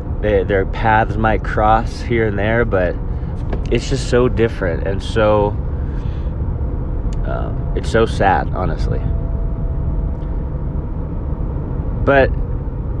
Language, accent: English, American